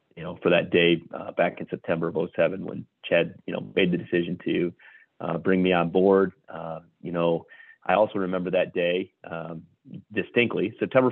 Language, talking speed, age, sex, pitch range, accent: English, 190 wpm, 30-49, male, 85-95 Hz, American